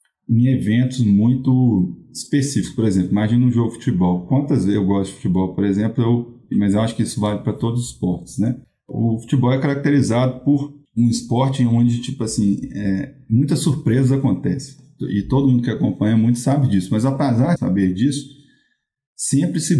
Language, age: Portuguese, 20-39